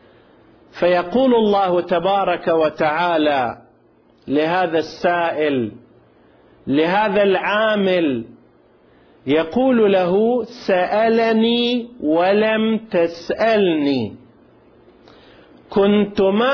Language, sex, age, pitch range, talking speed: Arabic, male, 40-59, 170-210 Hz, 50 wpm